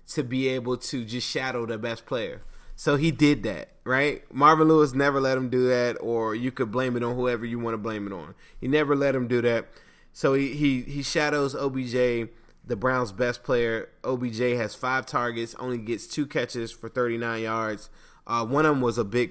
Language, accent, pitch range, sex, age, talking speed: English, American, 115-140 Hz, male, 20-39, 210 wpm